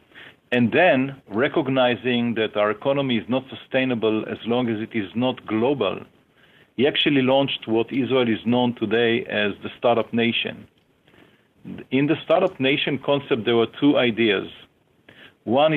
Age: 50-69